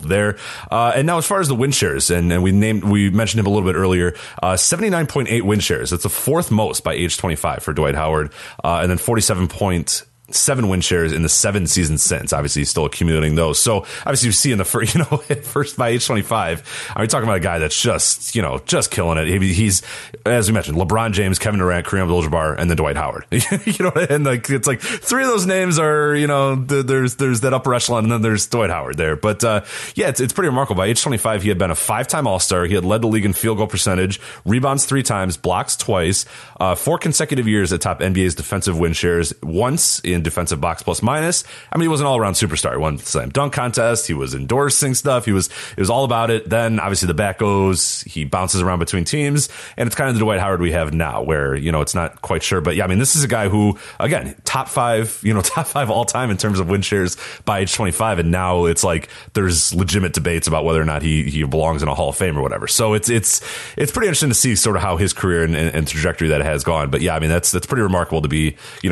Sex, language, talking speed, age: male, English, 265 wpm, 30-49